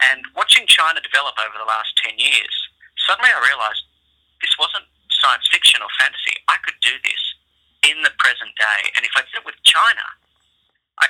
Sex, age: male, 30-49